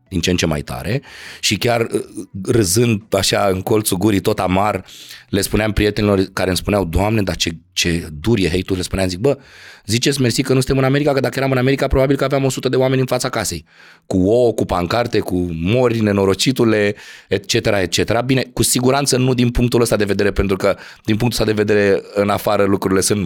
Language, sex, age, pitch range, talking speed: Romanian, male, 30-49, 90-115 Hz, 210 wpm